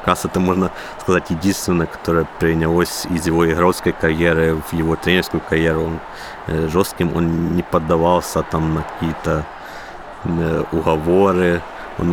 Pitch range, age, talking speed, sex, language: 80-90 Hz, 30-49, 135 wpm, male, Ukrainian